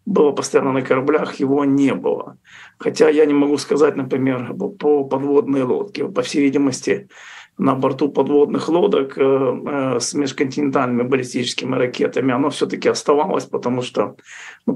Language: Russian